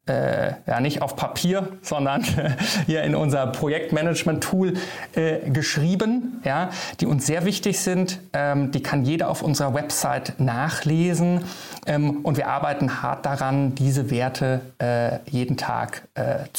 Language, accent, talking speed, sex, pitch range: German, German, 125 wpm, male, 140-170 Hz